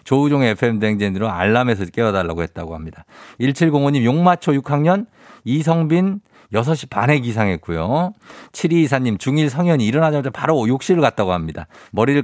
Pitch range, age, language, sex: 100-165 Hz, 50-69, Korean, male